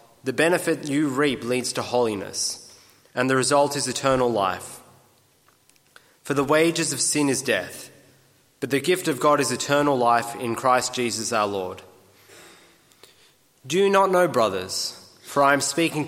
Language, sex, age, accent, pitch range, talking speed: English, male, 20-39, Australian, 125-150 Hz, 155 wpm